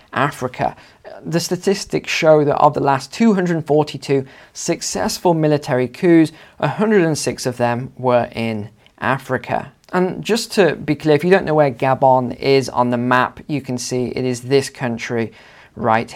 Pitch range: 125-155 Hz